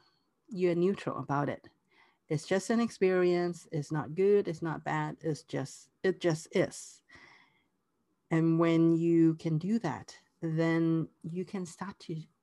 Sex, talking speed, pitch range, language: female, 145 wpm, 155-190 Hz, English